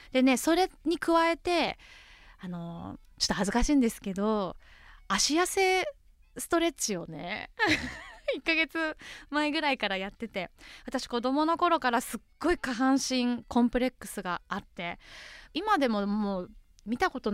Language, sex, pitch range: Japanese, female, 200-315 Hz